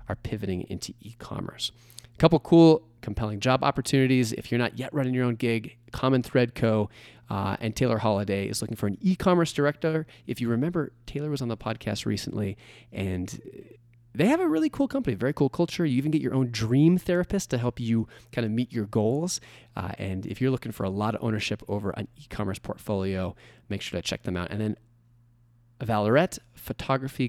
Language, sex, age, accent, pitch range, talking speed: English, male, 30-49, American, 100-135 Hz, 200 wpm